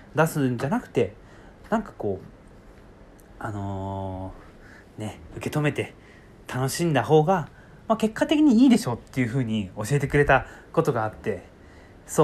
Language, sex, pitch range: Japanese, male, 105-155 Hz